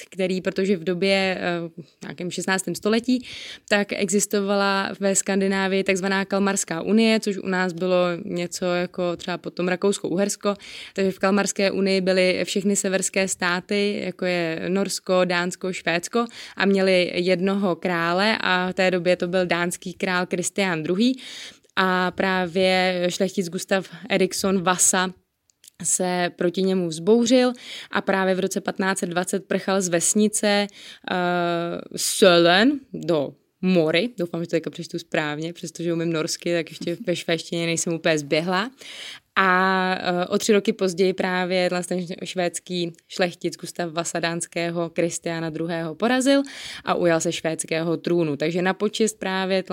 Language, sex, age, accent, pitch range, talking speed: Czech, female, 20-39, native, 175-195 Hz, 135 wpm